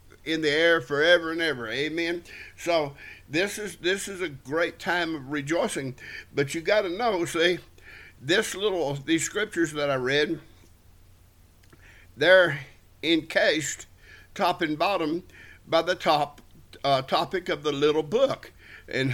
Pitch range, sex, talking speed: 130-180 Hz, male, 140 wpm